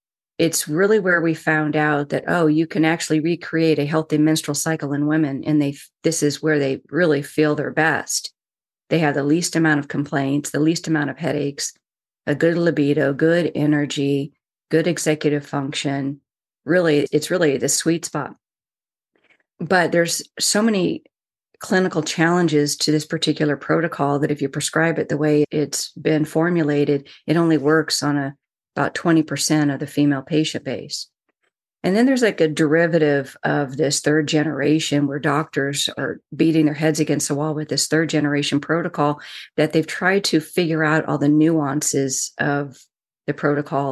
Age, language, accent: 40-59, English, American